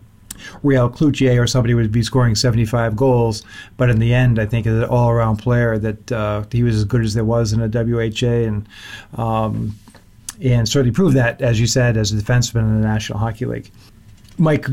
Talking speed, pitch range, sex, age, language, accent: 200 wpm, 110-130 Hz, male, 40-59, English, American